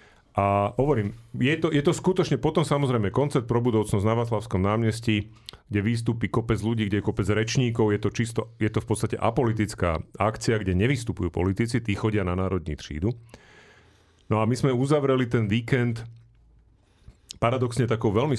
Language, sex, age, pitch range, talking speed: Slovak, male, 40-59, 95-115 Hz, 165 wpm